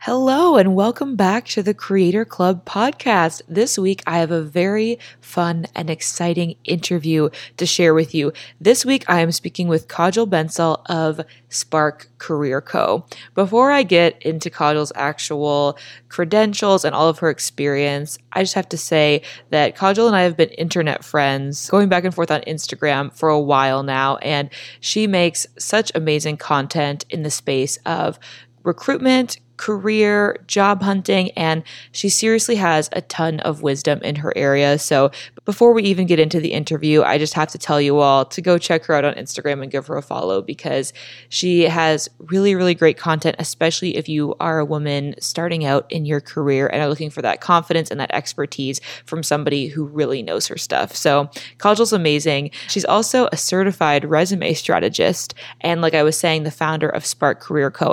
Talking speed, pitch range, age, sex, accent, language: 180 wpm, 145-185 Hz, 20-39, female, American, English